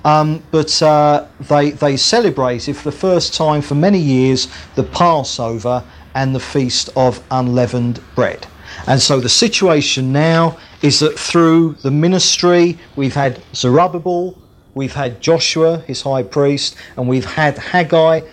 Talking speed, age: 145 wpm, 40-59